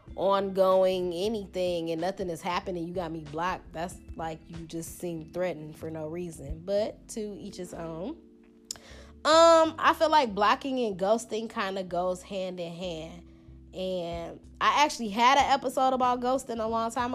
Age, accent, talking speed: 20-39, American, 170 wpm